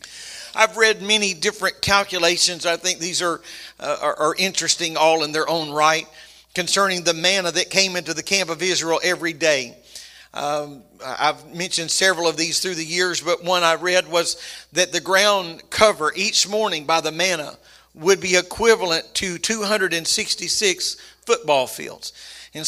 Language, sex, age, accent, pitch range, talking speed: English, male, 50-69, American, 165-210 Hz, 160 wpm